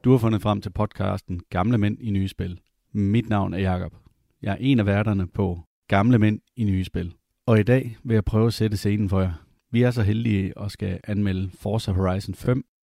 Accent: native